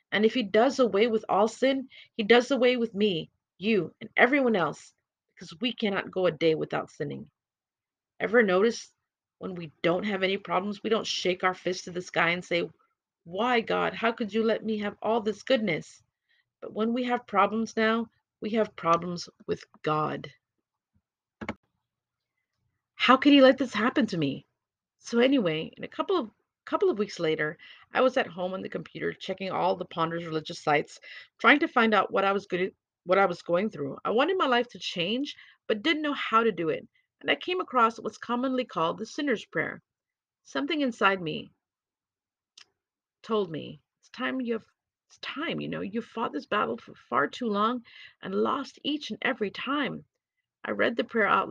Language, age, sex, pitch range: English, 40-59, female, 180-250 Hz